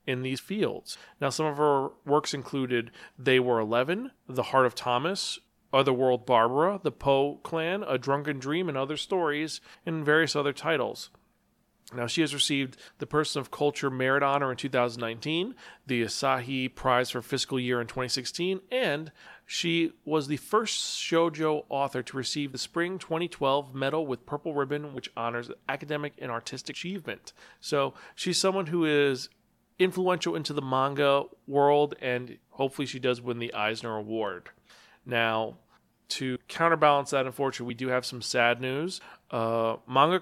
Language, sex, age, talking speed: English, male, 40-59, 155 wpm